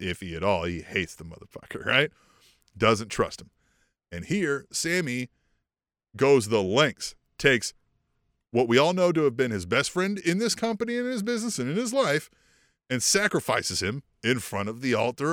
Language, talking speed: English, 190 wpm